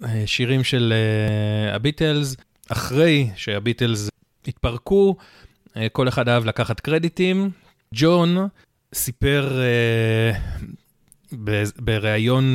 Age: 30-49